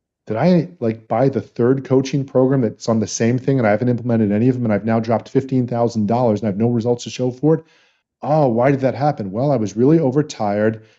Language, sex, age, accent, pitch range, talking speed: English, male, 40-59, American, 115-150 Hz, 240 wpm